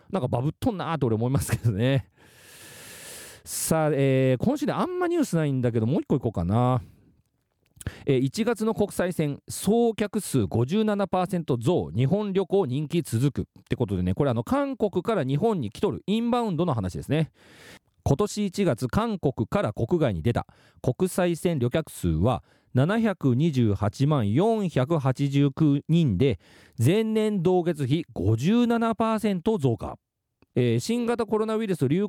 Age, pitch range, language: 40-59, 120-200 Hz, Japanese